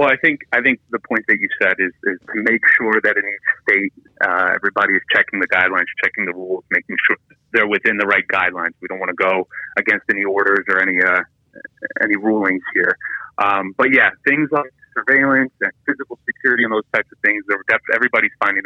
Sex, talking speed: male, 210 wpm